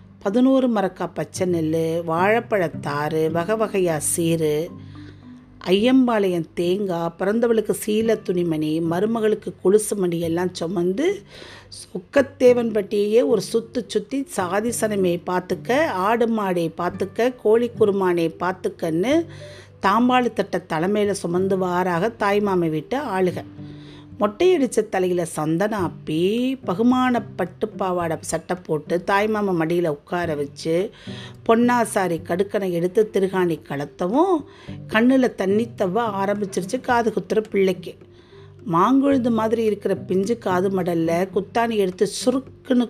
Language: Tamil